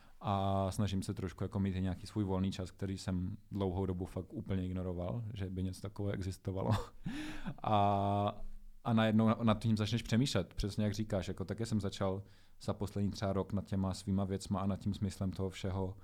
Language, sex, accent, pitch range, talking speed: Czech, male, native, 95-105 Hz, 190 wpm